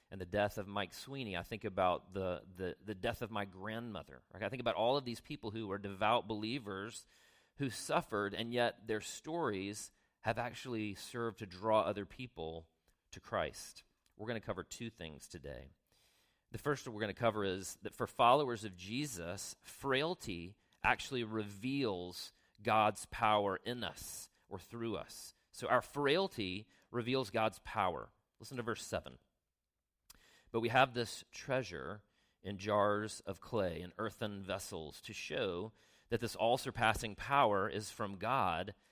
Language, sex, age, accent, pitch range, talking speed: English, male, 40-59, American, 95-120 Hz, 160 wpm